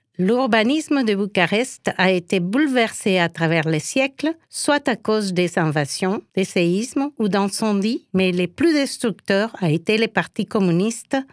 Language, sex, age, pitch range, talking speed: French, female, 50-69, 185-245 Hz, 150 wpm